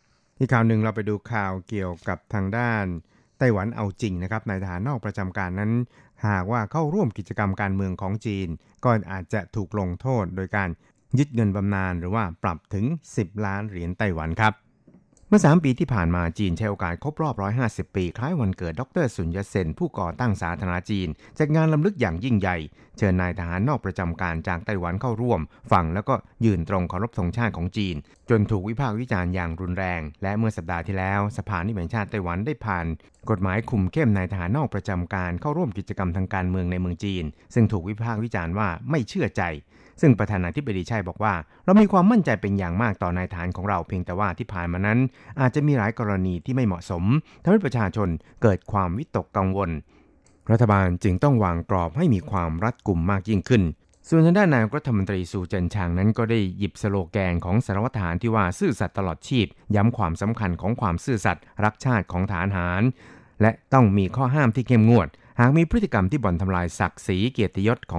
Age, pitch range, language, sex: 60-79, 90-115 Hz, Thai, male